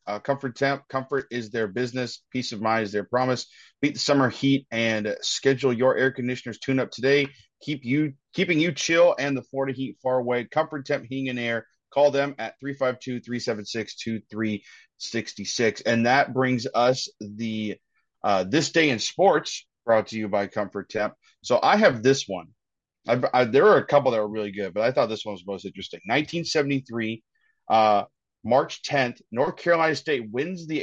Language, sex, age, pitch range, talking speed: English, male, 30-49, 110-140 Hz, 180 wpm